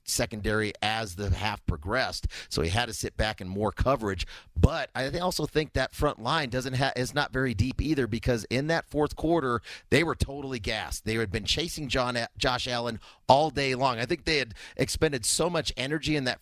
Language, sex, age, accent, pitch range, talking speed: English, male, 40-59, American, 110-135 Hz, 210 wpm